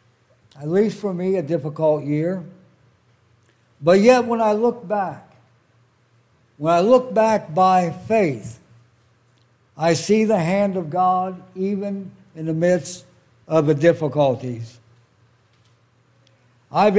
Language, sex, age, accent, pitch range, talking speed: English, male, 60-79, American, 125-200 Hz, 115 wpm